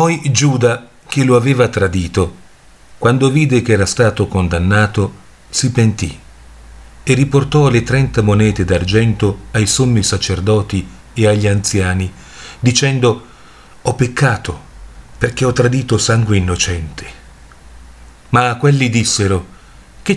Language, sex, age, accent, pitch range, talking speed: Italian, male, 40-59, native, 90-120 Hz, 115 wpm